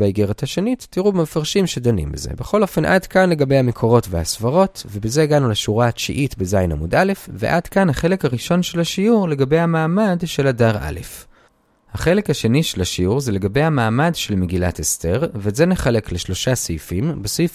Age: 30-49